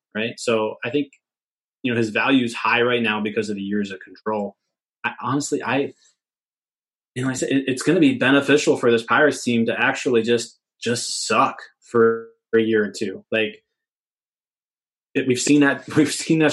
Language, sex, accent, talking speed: English, male, American, 195 wpm